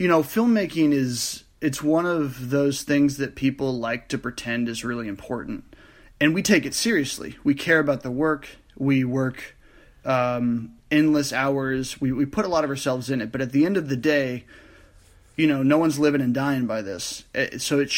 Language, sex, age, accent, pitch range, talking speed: English, male, 30-49, American, 125-150 Hz, 195 wpm